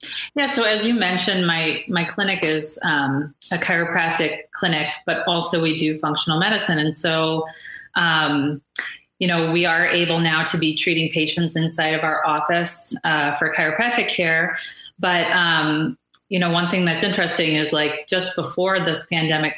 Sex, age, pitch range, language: female, 30-49, 155-175 Hz, English